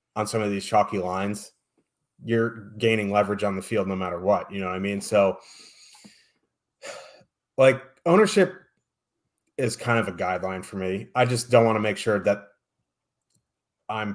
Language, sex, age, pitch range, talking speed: English, male, 30-49, 100-120 Hz, 165 wpm